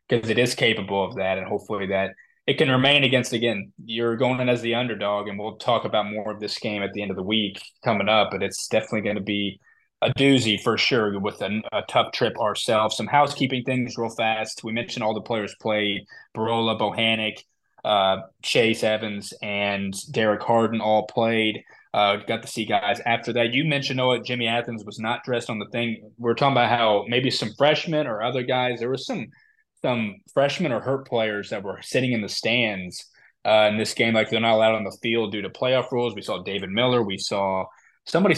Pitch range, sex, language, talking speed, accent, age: 105-120 Hz, male, English, 215 wpm, American, 20-39